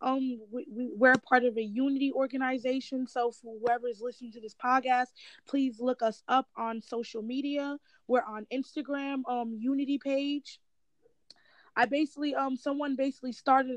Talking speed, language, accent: 150 wpm, English, American